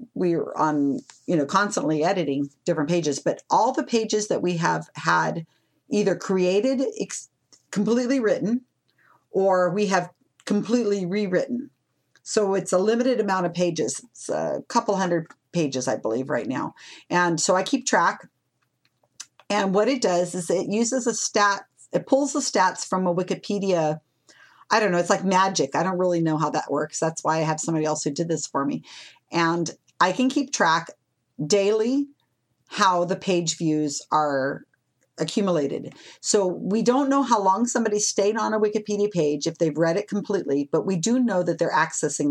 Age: 40-59